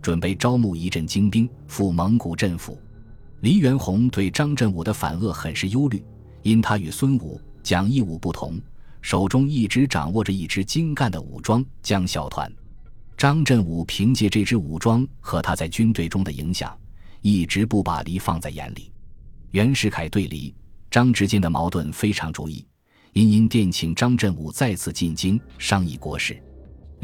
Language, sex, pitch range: Chinese, male, 85-115 Hz